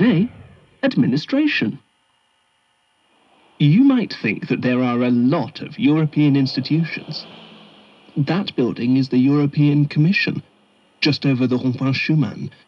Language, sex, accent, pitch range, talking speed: English, male, British, 125-185 Hz, 105 wpm